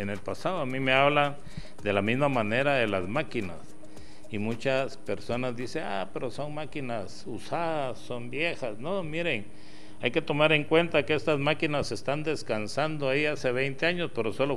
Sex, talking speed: male, 175 wpm